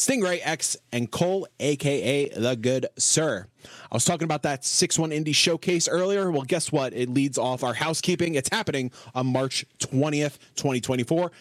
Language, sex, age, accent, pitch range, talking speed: English, male, 20-39, American, 115-150 Hz, 165 wpm